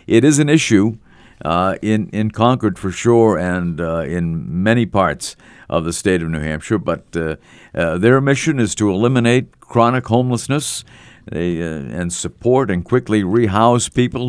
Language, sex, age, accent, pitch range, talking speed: English, male, 50-69, American, 85-115 Hz, 160 wpm